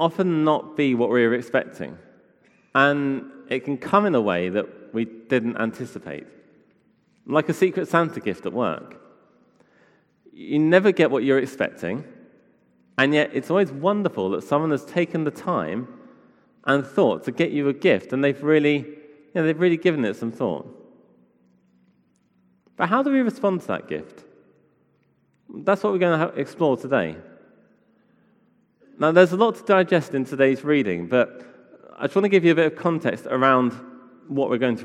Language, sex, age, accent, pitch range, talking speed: English, male, 30-49, British, 120-170 Hz, 170 wpm